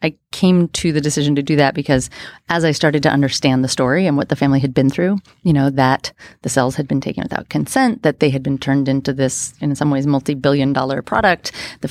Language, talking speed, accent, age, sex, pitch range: English, 240 wpm, American, 30-49, female, 135-155 Hz